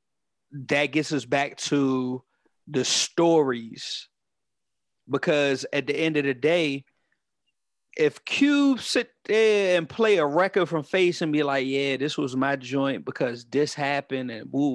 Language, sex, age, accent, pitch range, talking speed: English, male, 30-49, American, 135-175 Hz, 150 wpm